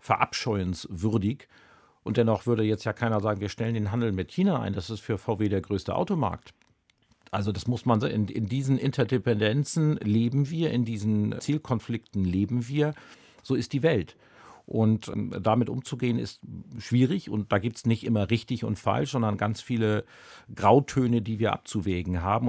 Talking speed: 170 wpm